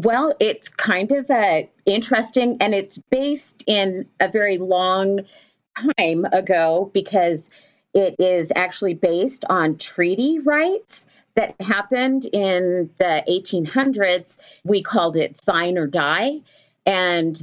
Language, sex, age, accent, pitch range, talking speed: English, female, 40-59, American, 170-215 Hz, 120 wpm